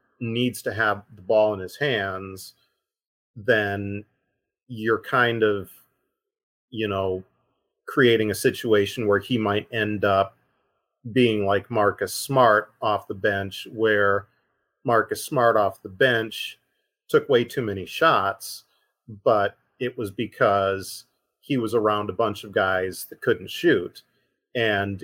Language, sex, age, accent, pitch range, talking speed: English, male, 30-49, American, 100-115 Hz, 130 wpm